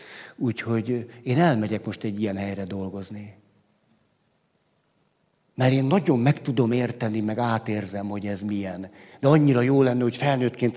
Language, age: Hungarian, 60-79